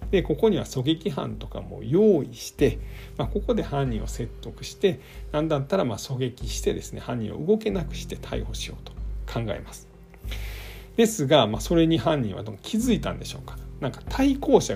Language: Japanese